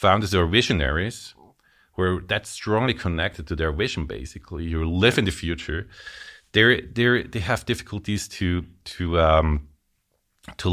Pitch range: 80-100 Hz